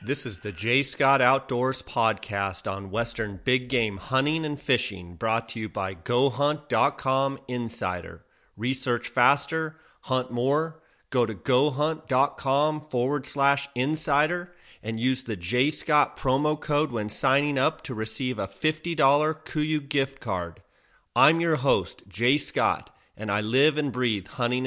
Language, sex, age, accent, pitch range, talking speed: English, male, 30-49, American, 105-130 Hz, 140 wpm